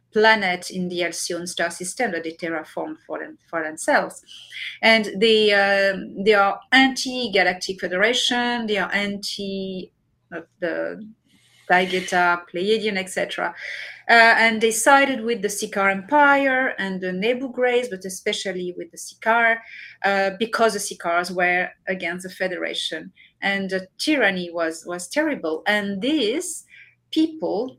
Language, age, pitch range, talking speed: English, 30-49, 185-245 Hz, 130 wpm